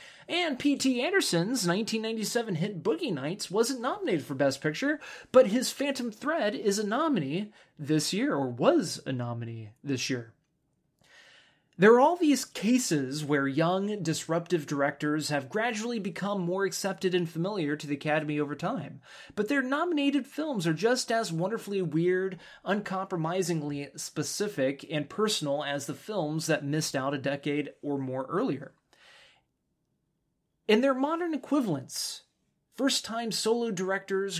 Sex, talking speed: male, 140 wpm